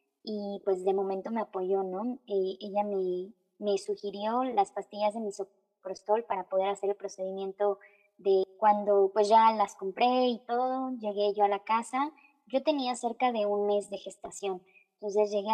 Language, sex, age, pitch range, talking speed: Spanish, male, 20-39, 200-230 Hz, 170 wpm